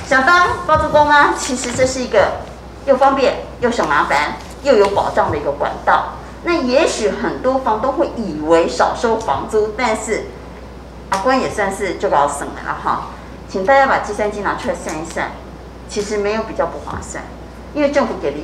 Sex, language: female, Chinese